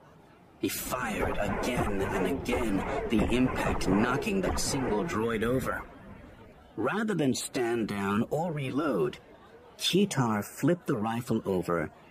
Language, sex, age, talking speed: English, male, 50-69, 115 wpm